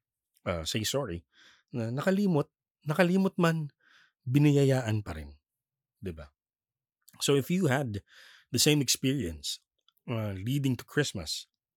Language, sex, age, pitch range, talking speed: Filipino, male, 20-39, 90-125 Hz, 115 wpm